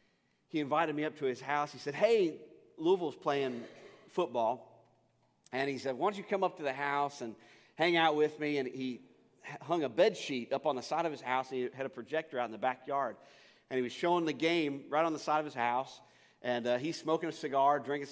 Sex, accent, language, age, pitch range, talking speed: male, American, English, 40-59, 135-190 Hz, 230 wpm